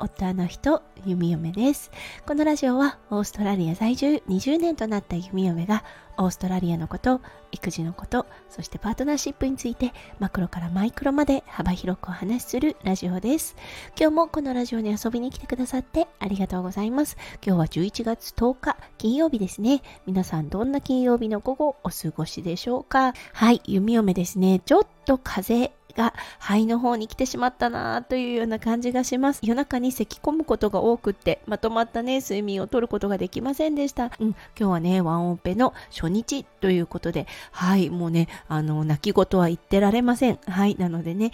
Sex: female